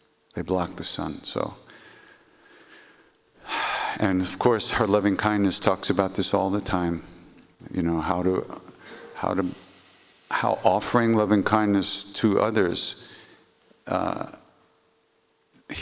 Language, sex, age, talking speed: English, male, 50-69, 115 wpm